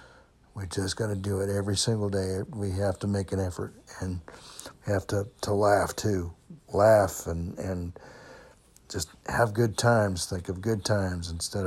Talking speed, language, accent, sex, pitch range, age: 170 wpm, English, American, male, 90-105 Hz, 60-79